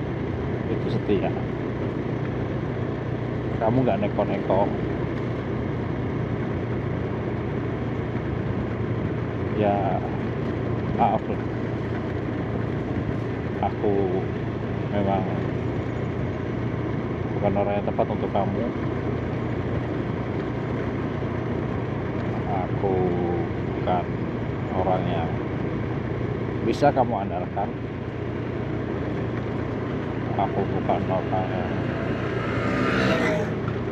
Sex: male